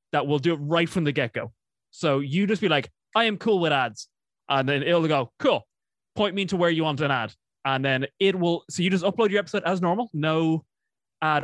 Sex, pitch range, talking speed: male, 135-185 Hz, 235 wpm